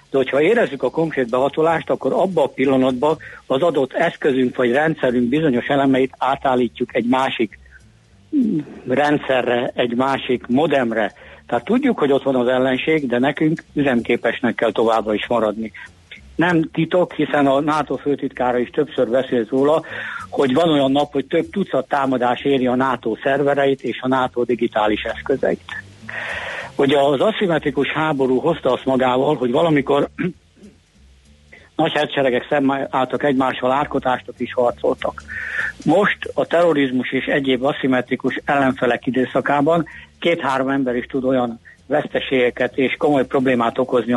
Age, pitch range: 60-79, 125-145 Hz